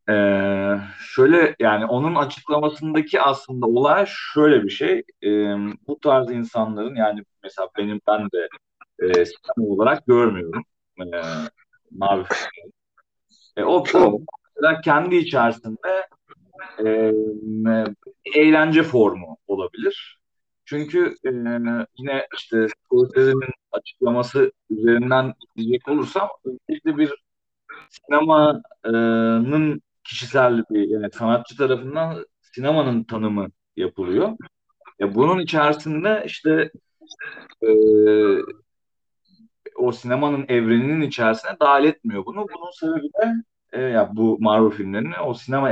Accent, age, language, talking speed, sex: native, 40-59, Turkish, 100 wpm, male